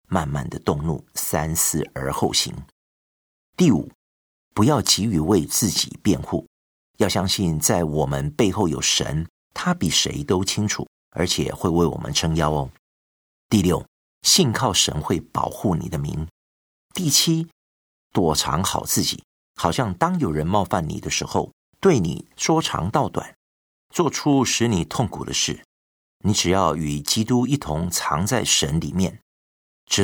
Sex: male